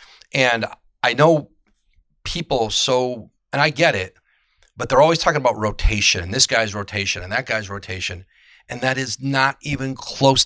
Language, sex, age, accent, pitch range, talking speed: English, male, 40-59, American, 100-125 Hz, 165 wpm